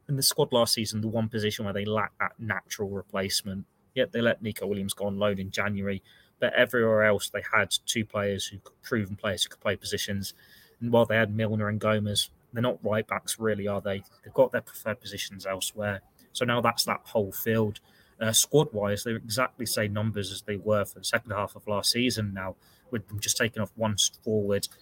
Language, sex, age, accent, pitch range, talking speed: English, male, 20-39, British, 100-115 Hz, 220 wpm